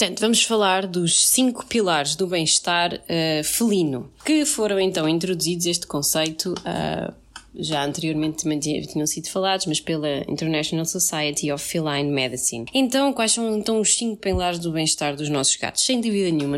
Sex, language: female, English